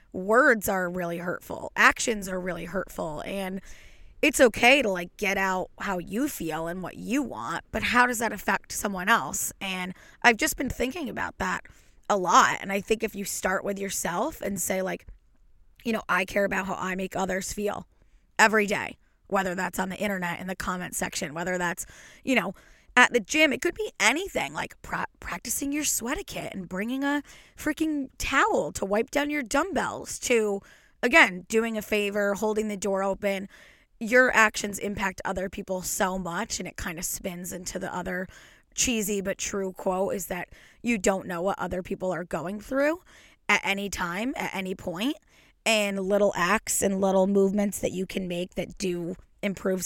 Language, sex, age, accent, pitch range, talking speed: English, female, 20-39, American, 185-225 Hz, 185 wpm